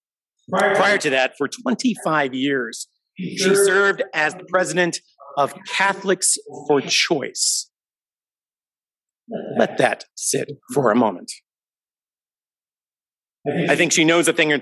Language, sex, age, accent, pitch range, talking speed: English, male, 50-69, American, 155-195 Hz, 115 wpm